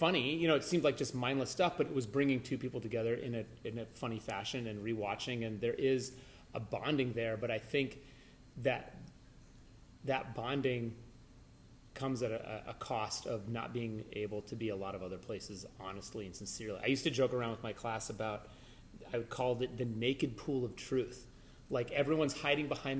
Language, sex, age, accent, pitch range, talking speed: English, male, 30-49, American, 115-135 Hz, 200 wpm